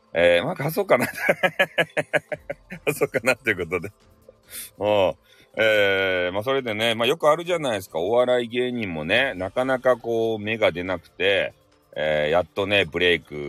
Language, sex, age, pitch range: Japanese, male, 40-59, 95-150 Hz